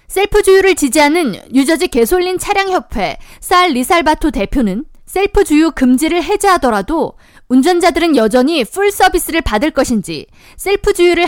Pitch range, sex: 260-365 Hz, female